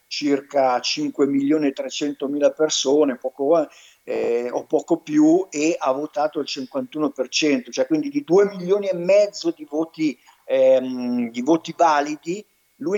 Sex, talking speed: male, 120 wpm